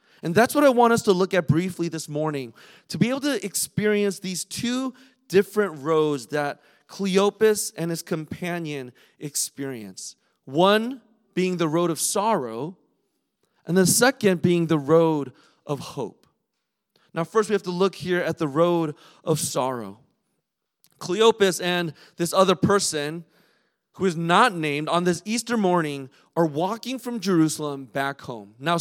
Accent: American